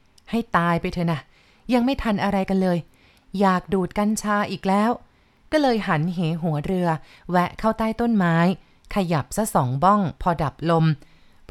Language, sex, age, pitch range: Thai, female, 30-49, 170-215 Hz